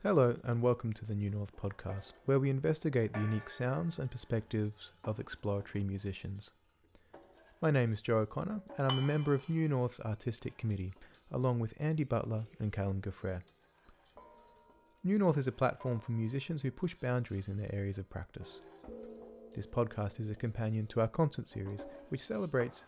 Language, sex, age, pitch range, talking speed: English, male, 30-49, 100-135 Hz, 175 wpm